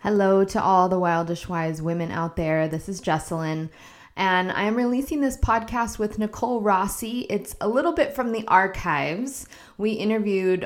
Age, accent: 20-39, American